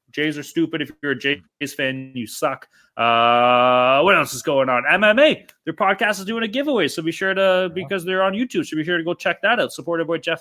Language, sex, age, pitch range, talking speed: English, male, 20-39, 130-180 Hz, 255 wpm